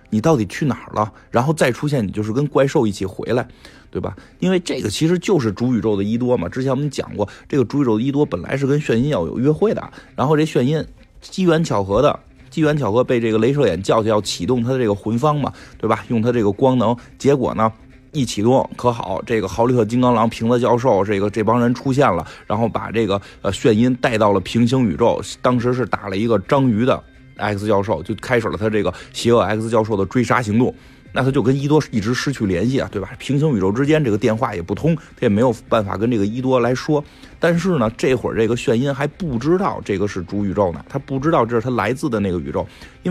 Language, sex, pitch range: Chinese, male, 110-145 Hz